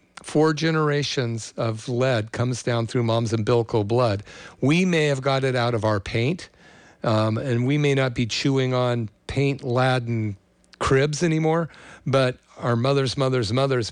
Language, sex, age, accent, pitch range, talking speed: English, male, 50-69, American, 115-140 Hz, 155 wpm